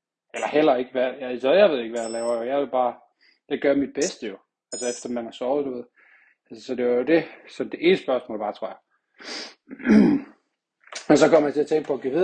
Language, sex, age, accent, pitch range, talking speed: Danish, male, 30-49, native, 120-150 Hz, 245 wpm